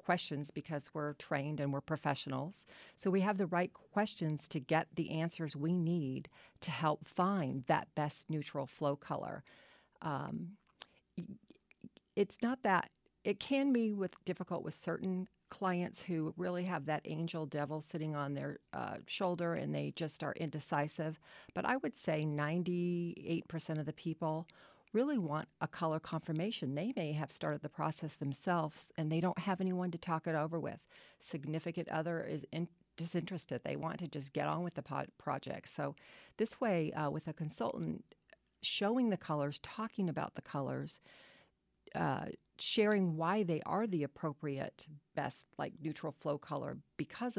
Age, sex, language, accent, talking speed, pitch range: 40-59, female, English, American, 160 wpm, 150-180 Hz